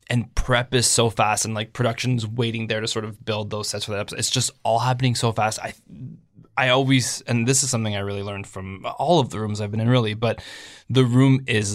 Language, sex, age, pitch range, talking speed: English, male, 20-39, 110-125 Hz, 245 wpm